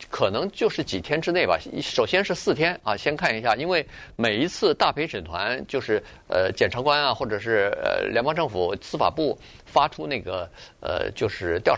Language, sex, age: Chinese, male, 50-69